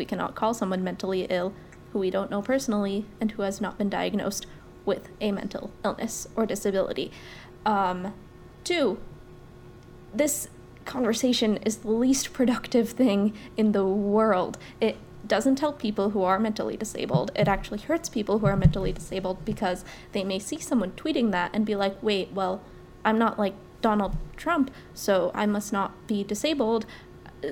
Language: English